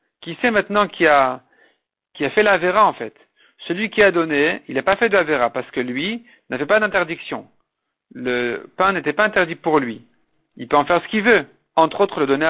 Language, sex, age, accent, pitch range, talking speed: French, male, 50-69, French, 150-200 Hz, 210 wpm